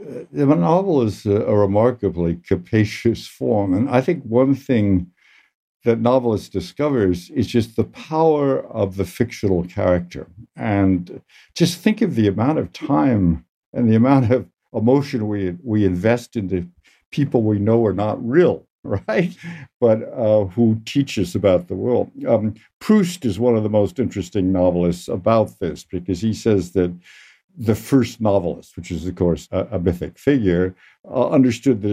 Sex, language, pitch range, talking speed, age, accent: male, English, 95-125 Hz, 160 wpm, 60-79, American